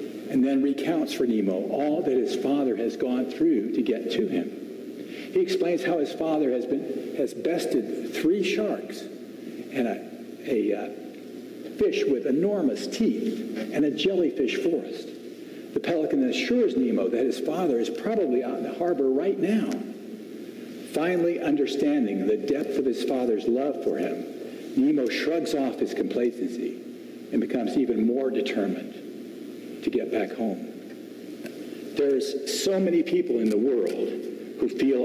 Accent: American